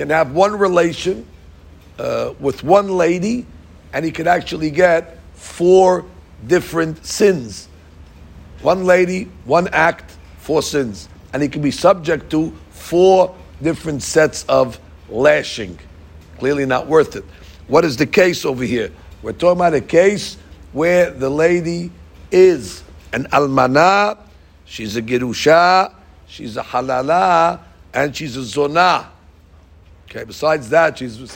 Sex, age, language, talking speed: male, 50-69, English, 130 wpm